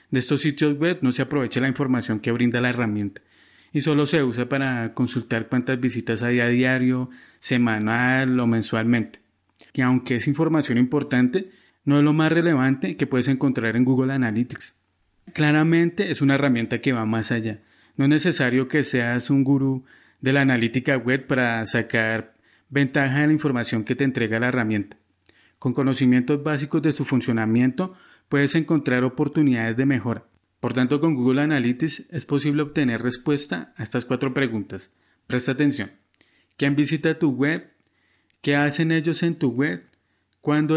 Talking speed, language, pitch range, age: 165 wpm, Spanish, 120-145 Hz, 30-49